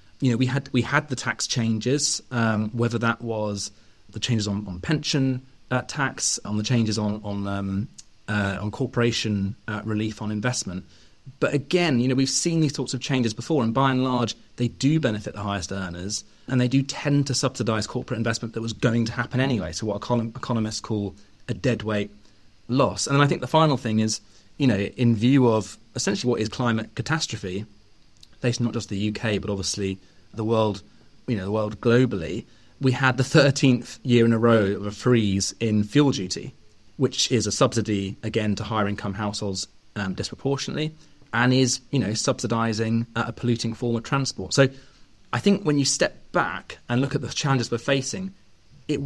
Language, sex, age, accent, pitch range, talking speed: English, male, 30-49, British, 105-130 Hz, 195 wpm